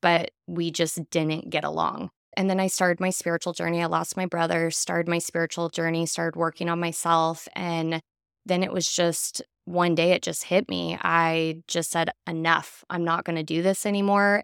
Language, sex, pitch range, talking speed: English, female, 165-190 Hz, 195 wpm